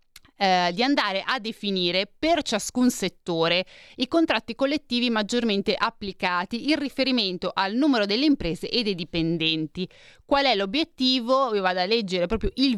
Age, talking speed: 30-49, 140 wpm